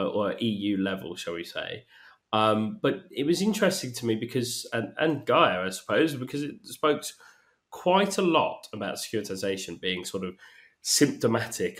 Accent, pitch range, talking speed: British, 95-125 Hz, 160 wpm